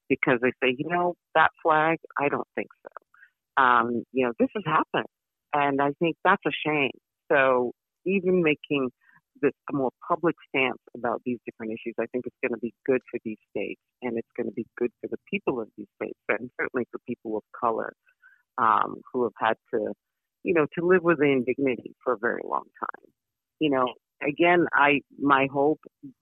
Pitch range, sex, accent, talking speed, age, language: 125-145 Hz, female, American, 195 wpm, 40-59, English